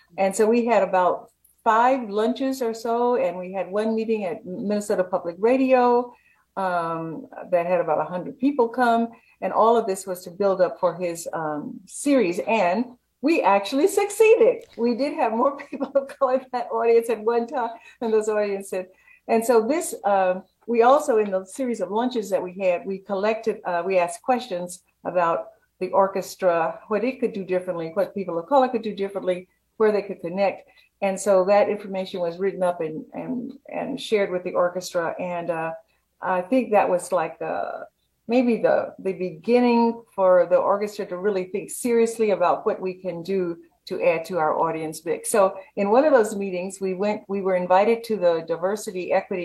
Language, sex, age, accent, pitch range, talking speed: English, female, 50-69, American, 180-235 Hz, 190 wpm